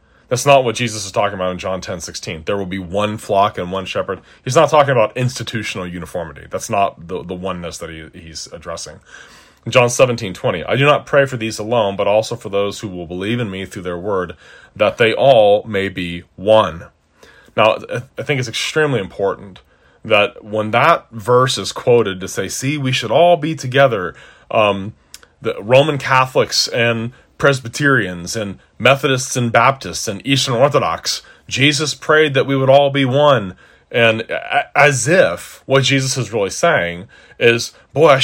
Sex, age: male, 30-49